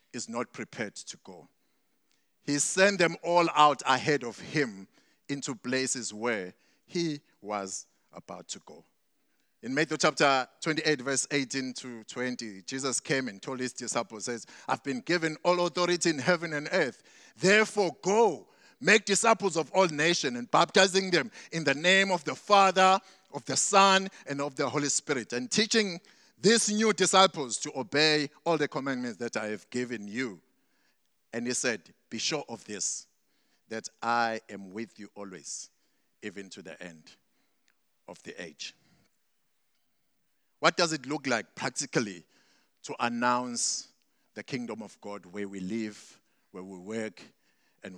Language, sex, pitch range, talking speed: English, male, 115-170 Hz, 155 wpm